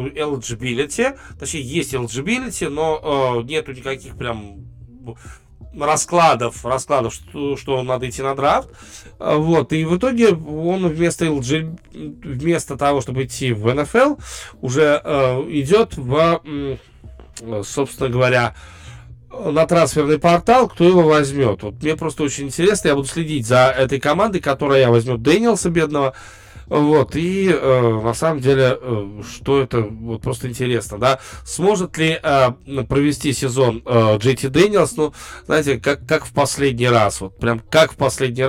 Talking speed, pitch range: 140 wpm, 120-155 Hz